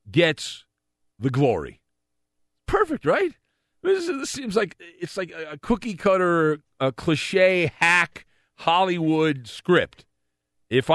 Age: 40-59